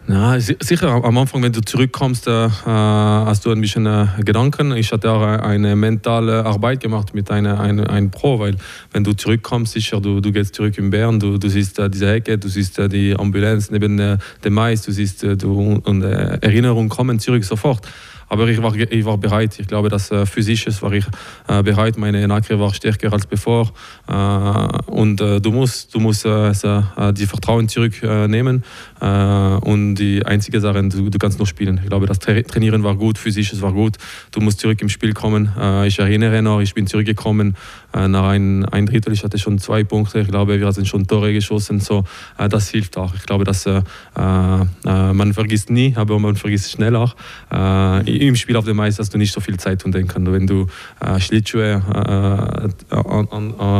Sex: male